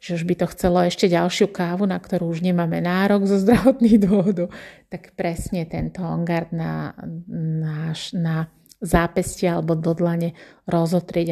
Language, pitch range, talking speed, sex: Slovak, 170-190 Hz, 150 wpm, female